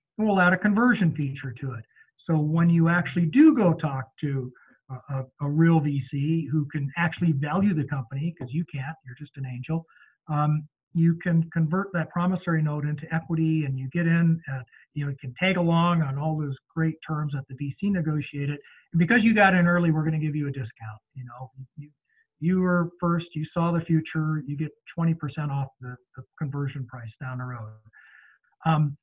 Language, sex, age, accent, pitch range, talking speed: English, male, 50-69, American, 140-165 Hz, 200 wpm